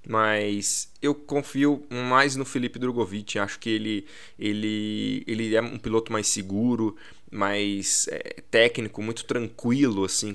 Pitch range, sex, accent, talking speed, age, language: 100-120 Hz, male, Brazilian, 135 wpm, 20-39, Portuguese